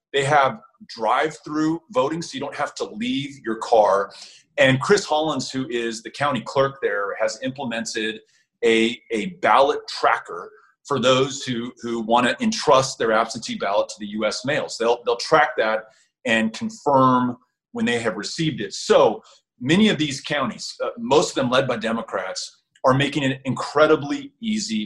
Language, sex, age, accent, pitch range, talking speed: English, male, 30-49, American, 125-195 Hz, 165 wpm